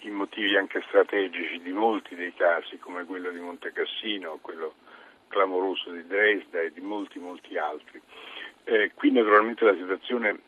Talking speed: 155 wpm